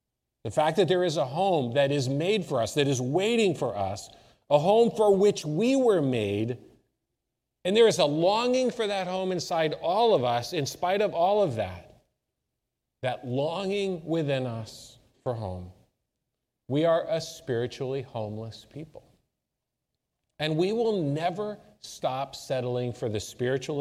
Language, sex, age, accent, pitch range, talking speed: English, male, 40-59, American, 115-170 Hz, 160 wpm